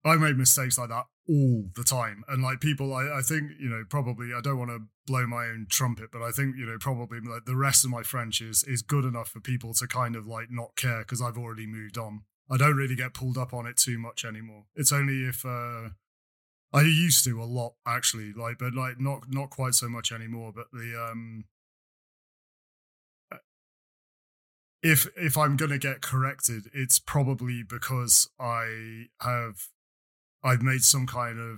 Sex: male